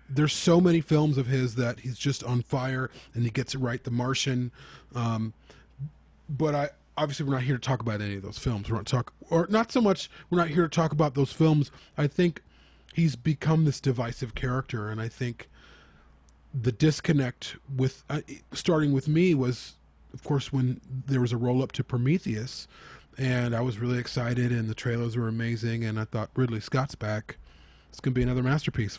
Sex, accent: male, American